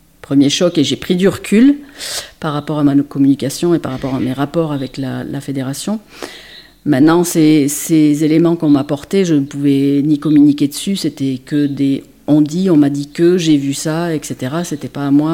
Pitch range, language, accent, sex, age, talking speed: 140-170 Hz, French, French, female, 50-69, 205 wpm